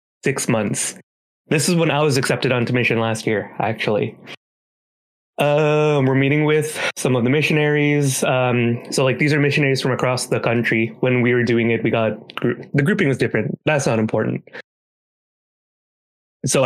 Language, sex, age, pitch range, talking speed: English, male, 20-39, 115-150 Hz, 165 wpm